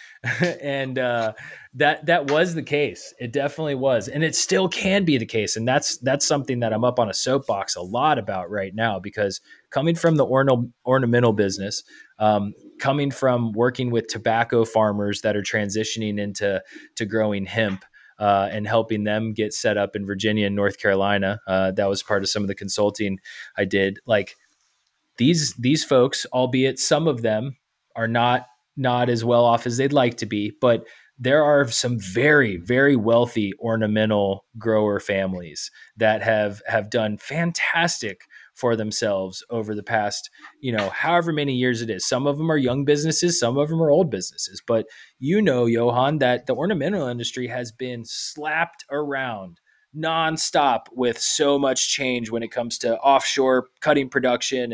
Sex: male